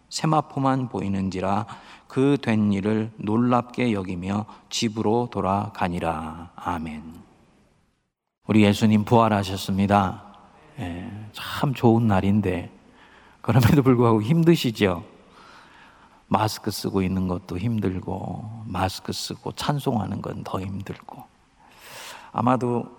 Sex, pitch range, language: male, 95-110 Hz, Korean